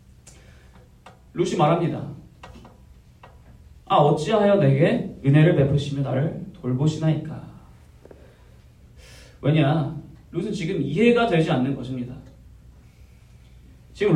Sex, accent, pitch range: male, native, 130-180 Hz